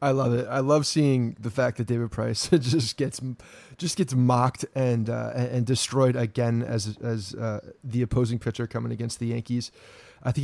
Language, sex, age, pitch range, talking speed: English, male, 30-49, 125-150 Hz, 190 wpm